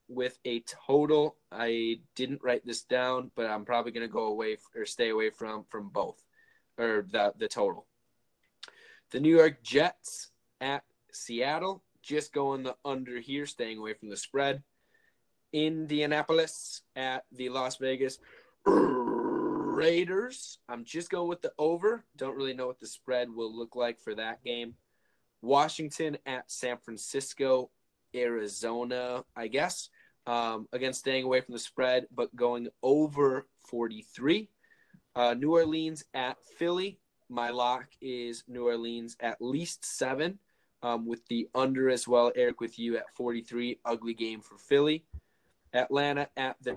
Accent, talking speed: American, 145 wpm